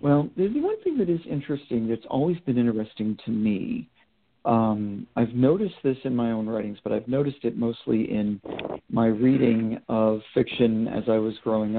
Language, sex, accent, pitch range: English, male, American, 115-155 Hz